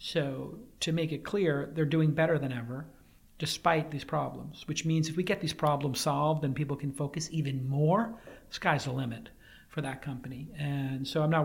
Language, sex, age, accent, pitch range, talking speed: English, male, 40-59, American, 135-160 Hz, 200 wpm